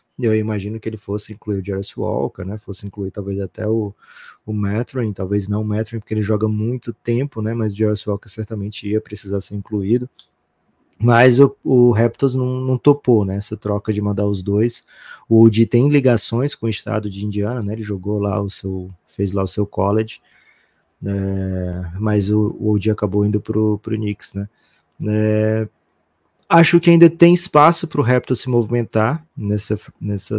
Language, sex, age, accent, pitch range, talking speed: Portuguese, male, 20-39, Brazilian, 105-120 Hz, 185 wpm